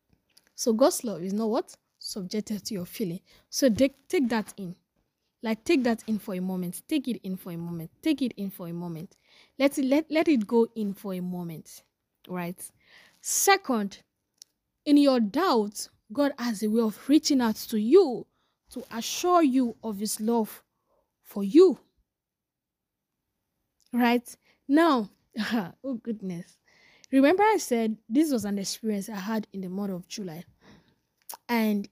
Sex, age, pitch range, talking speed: female, 10-29, 195-265 Hz, 155 wpm